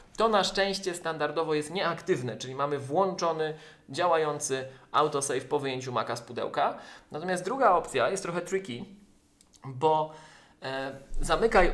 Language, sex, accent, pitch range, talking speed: Polish, male, native, 135-155 Hz, 130 wpm